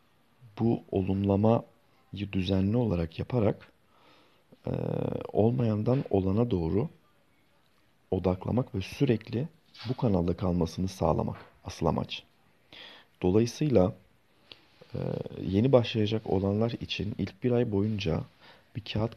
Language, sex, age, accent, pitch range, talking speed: Turkish, male, 40-59, native, 90-110 Hz, 90 wpm